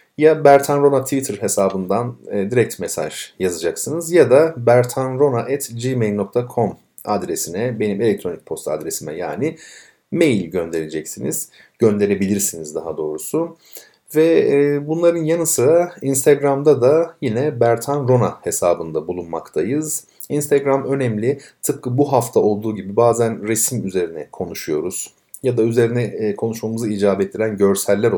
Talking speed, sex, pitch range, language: 115 wpm, male, 100-140 Hz, Turkish